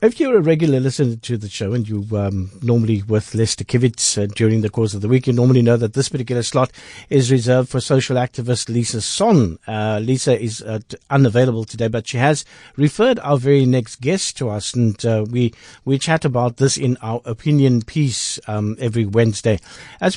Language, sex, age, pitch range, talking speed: English, male, 50-69, 115-140 Hz, 200 wpm